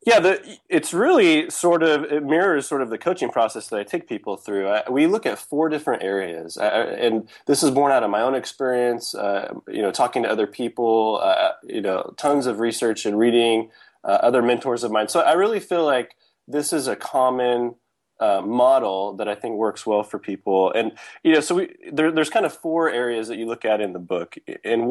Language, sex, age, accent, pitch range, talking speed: English, male, 20-39, American, 105-140 Hz, 220 wpm